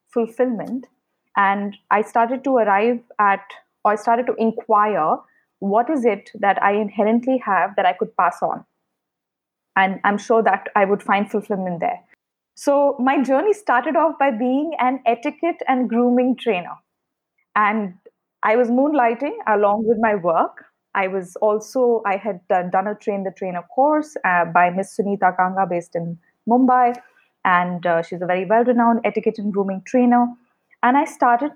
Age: 20-39